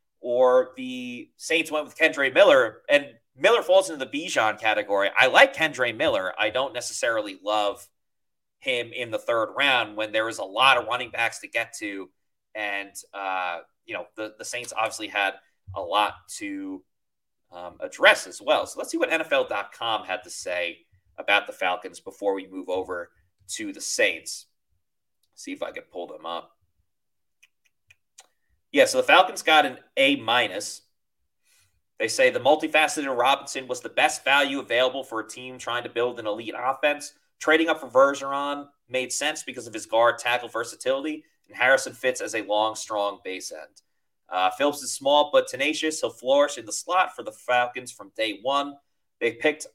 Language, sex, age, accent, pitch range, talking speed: English, male, 30-49, American, 105-155 Hz, 175 wpm